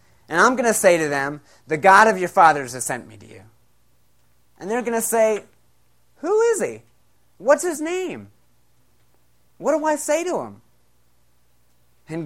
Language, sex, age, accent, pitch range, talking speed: English, male, 30-49, American, 125-210 Hz, 170 wpm